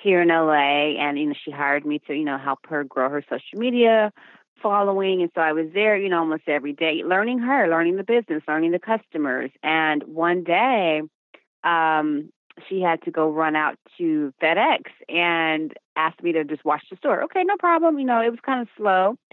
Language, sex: English, female